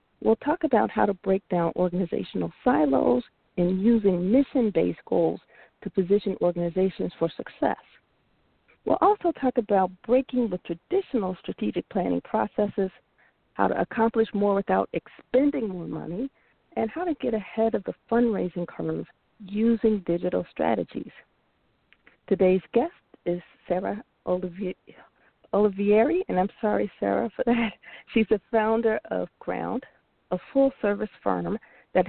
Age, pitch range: 40-59, 180-240 Hz